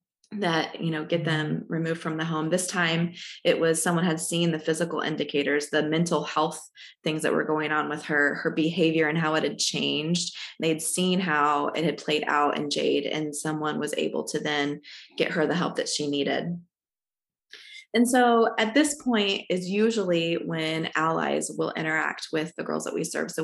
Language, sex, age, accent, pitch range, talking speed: English, female, 20-39, American, 155-185 Hz, 195 wpm